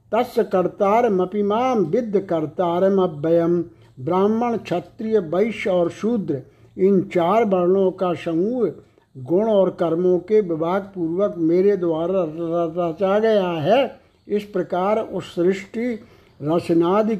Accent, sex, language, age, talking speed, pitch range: native, male, Hindi, 60-79, 105 wpm, 170-215 Hz